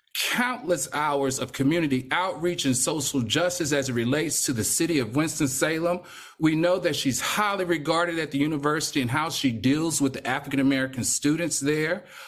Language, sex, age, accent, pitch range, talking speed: English, male, 40-59, American, 140-205 Hz, 165 wpm